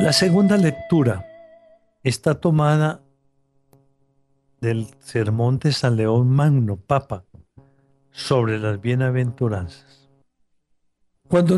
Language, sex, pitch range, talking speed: Spanish, male, 120-145 Hz, 85 wpm